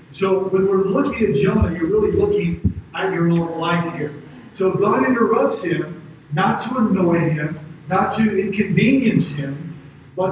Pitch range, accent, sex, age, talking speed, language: 165-215 Hz, American, male, 40-59, 155 wpm, English